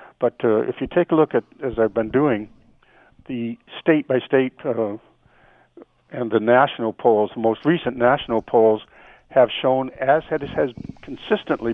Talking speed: 150 wpm